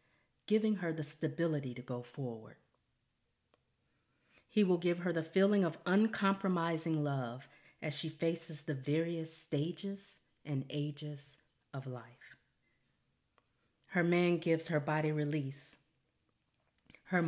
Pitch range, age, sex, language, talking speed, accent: 140-185 Hz, 40-59, female, English, 115 wpm, American